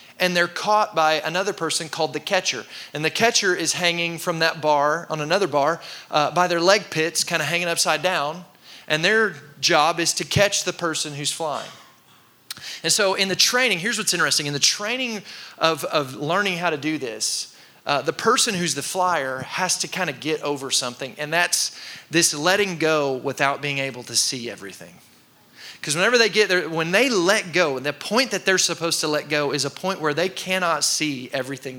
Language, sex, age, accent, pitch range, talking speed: English, male, 30-49, American, 150-185 Hz, 205 wpm